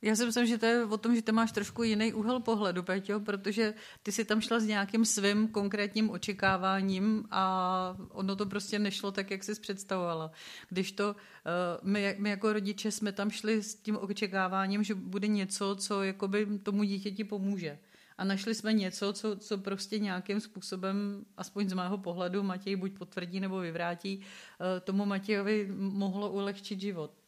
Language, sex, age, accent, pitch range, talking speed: Czech, female, 40-59, native, 185-210 Hz, 175 wpm